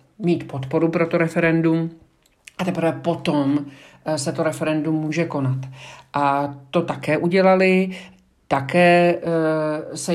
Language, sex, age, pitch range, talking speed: Czech, male, 50-69, 150-165 Hz, 110 wpm